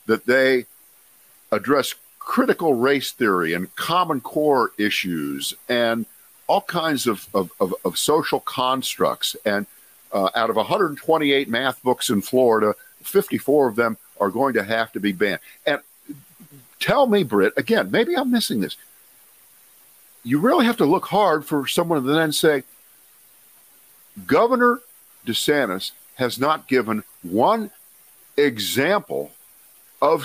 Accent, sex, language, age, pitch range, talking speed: American, male, English, 50-69, 105-155 Hz, 130 wpm